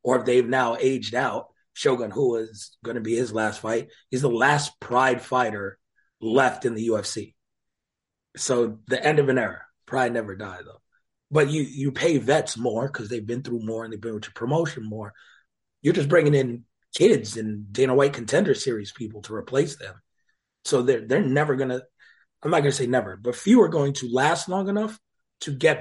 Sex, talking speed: male, 205 wpm